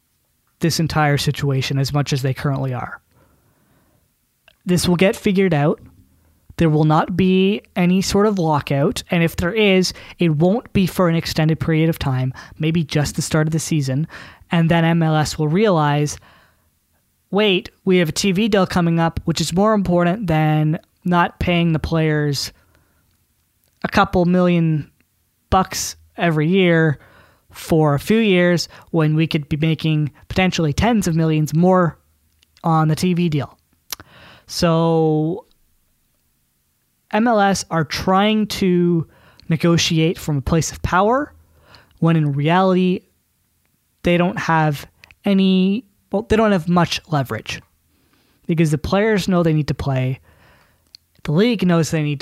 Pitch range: 145-180 Hz